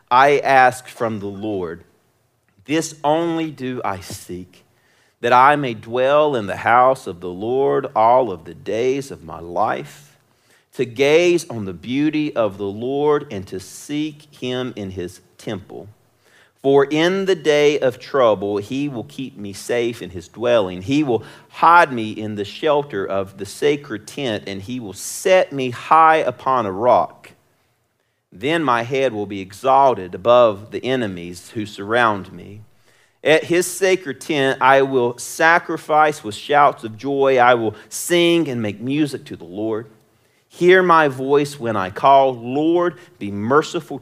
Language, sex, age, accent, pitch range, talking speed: English, male, 40-59, American, 105-145 Hz, 160 wpm